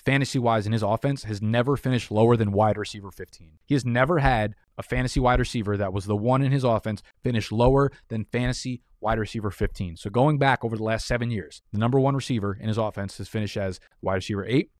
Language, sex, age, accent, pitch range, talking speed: English, male, 20-39, American, 105-130 Hz, 225 wpm